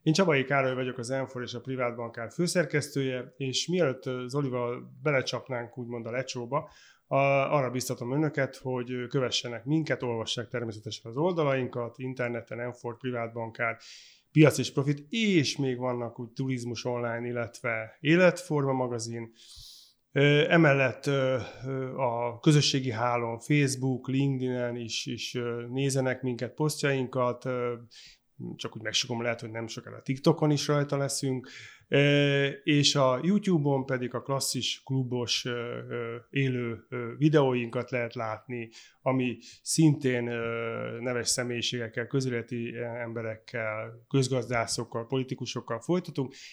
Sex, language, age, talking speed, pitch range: male, Hungarian, 30-49, 110 wpm, 120-135 Hz